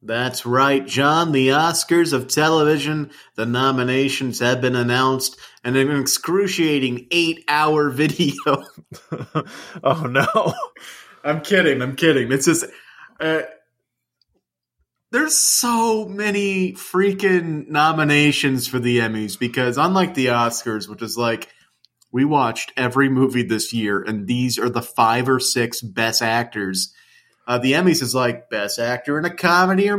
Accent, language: American, English